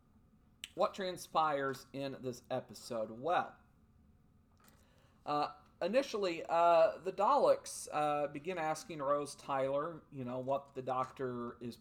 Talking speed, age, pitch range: 110 wpm, 40-59, 125-155 Hz